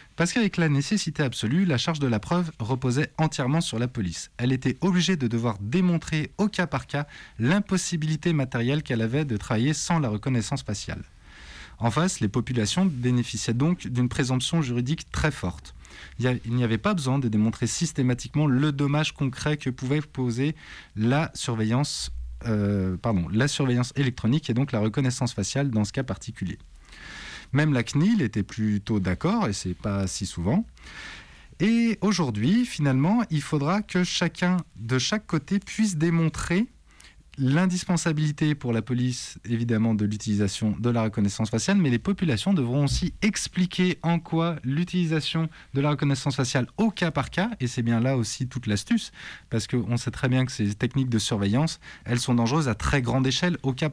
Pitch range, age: 115-160 Hz, 20-39